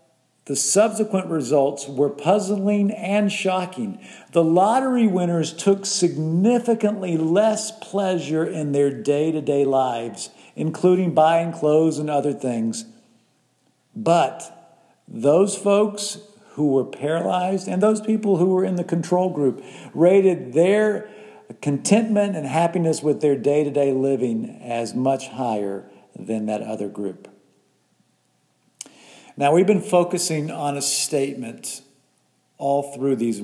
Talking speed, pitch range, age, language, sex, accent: 115 wpm, 130-175 Hz, 50-69, English, male, American